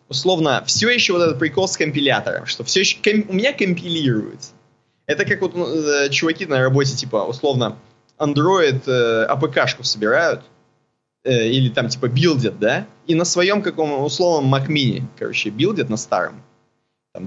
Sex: male